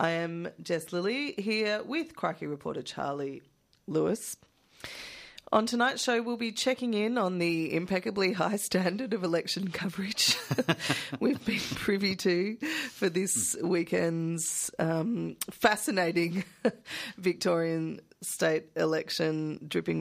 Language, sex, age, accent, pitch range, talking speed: English, female, 30-49, Australian, 165-200 Hz, 115 wpm